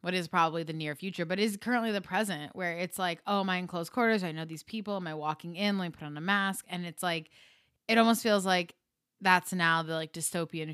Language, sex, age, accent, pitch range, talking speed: English, female, 20-39, American, 155-195 Hz, 255 wpm